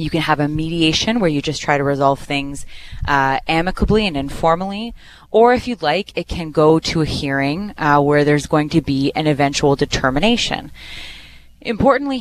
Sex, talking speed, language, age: female, 175 wpm, English, 20-39